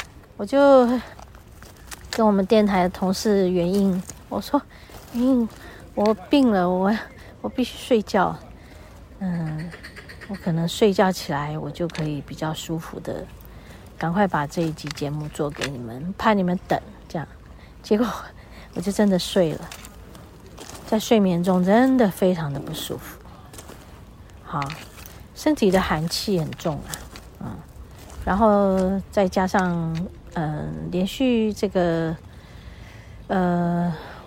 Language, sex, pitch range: Chinese, female, 165-225 Hz